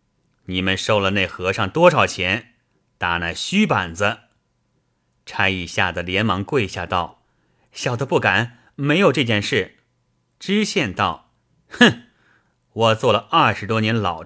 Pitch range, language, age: 95-125 Hz, Chinese, 30-49